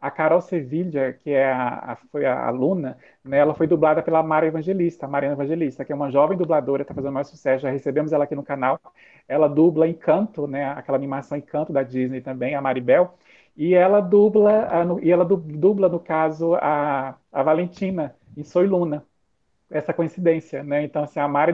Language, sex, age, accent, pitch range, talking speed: Portuguese, male, 40-59, Brazilian, 140-165 Hz, 190 wpm